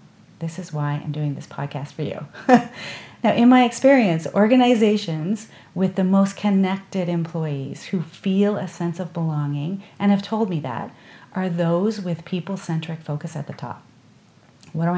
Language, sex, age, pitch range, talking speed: English, female, 40-59, 155-190 Hz, 160 wpm